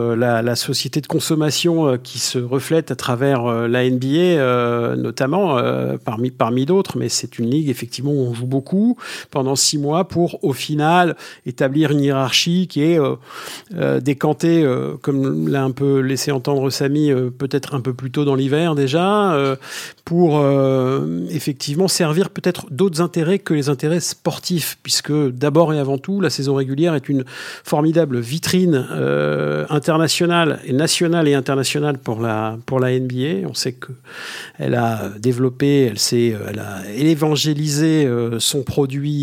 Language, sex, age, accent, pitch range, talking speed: French, male, 50-69, French, 120-150 Hz, 165 wpm